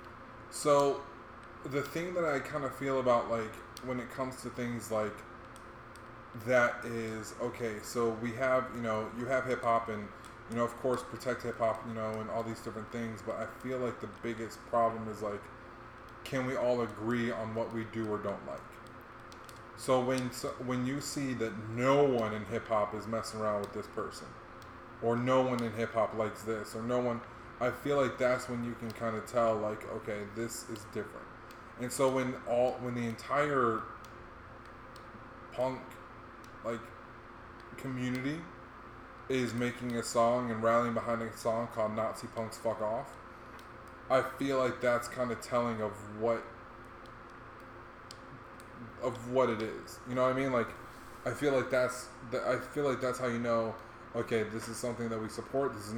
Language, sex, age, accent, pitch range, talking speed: English, male, 20-39, American, 110-125 Hz, 180 wpm